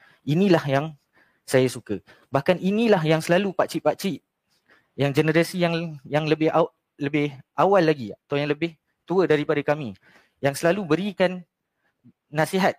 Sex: male